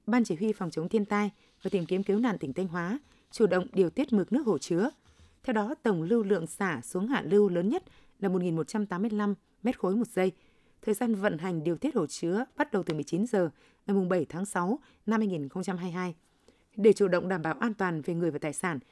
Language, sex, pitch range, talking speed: Vietnamese, female, 175-220 Hz, 220 wpm